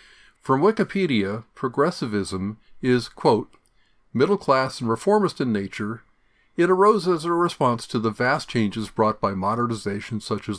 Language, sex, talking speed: English, male, 140 wpm